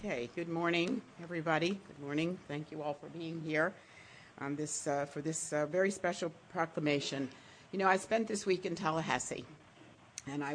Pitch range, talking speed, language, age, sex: 150-185 Hz, 175 wpm, English, 50-69, female